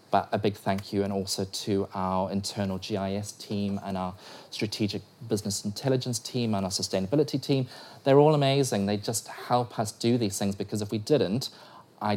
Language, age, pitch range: English, 30-49, 100-120 Hz